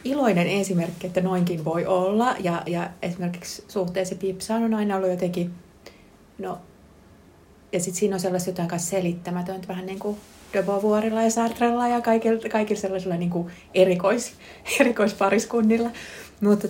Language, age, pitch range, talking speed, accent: Finnish, 30-49, 175-210 Hz, 140 wpm, native